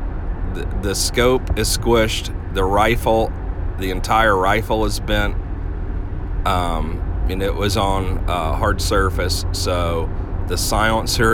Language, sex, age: English, male, 40-59